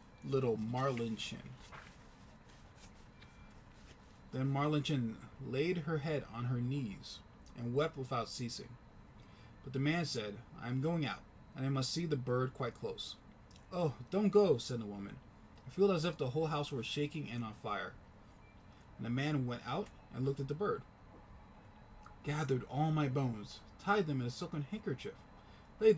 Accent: American